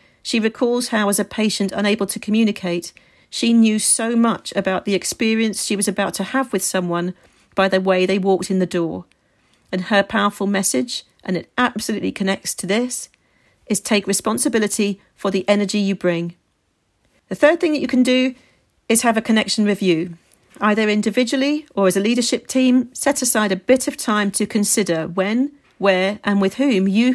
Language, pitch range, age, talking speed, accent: English, 190-225 Hz, 40-59, 180 wpm, British